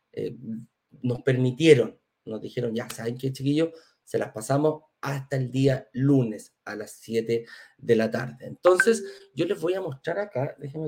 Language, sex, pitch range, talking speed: Spanish, male, 135-190 Hz, 165 wpm